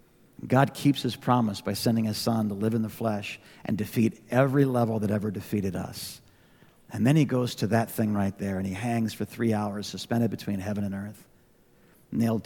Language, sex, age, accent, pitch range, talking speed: English, male, 50-69, American, 110-140 Hz, 200 wpm